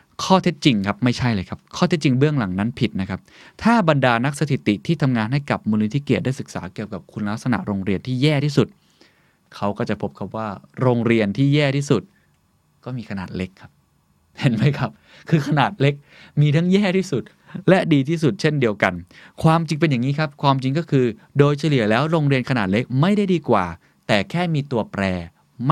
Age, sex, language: 20-39, male, Thai